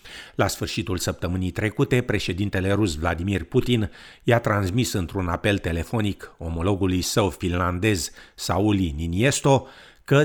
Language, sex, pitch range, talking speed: Romanian, male, 95-125 Hz, 110 wpm